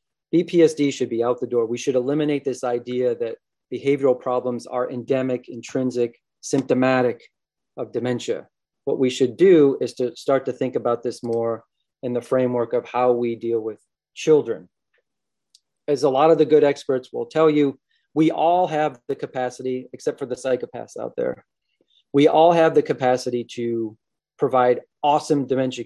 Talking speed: 165 wpm